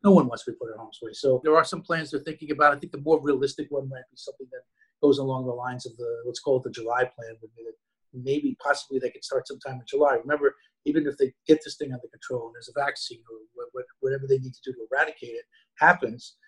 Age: 50-69